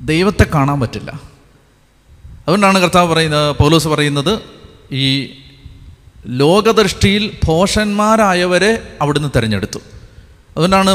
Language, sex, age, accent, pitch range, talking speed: Malayalam, male, 30-49, native, 130-190 Hz, 75 wpm